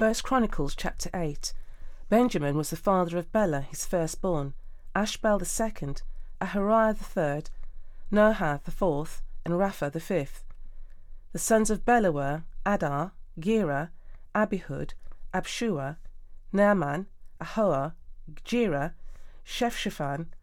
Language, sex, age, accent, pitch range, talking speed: English, female, 40-59, British, 140-200 Hz, 110 wpm